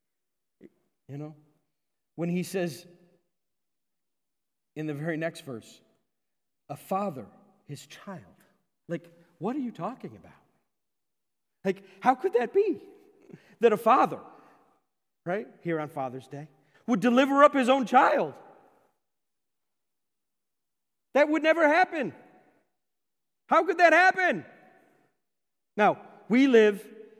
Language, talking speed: English, 110 wpm